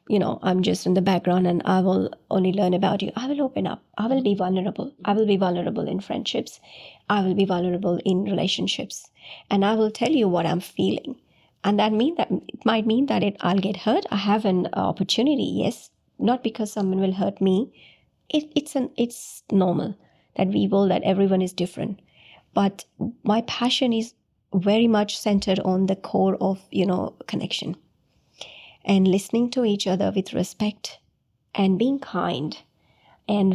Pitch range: 190-225 Hz